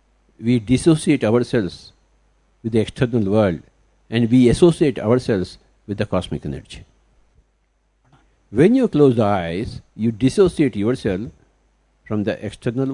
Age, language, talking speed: 60-79, English, 120 wpm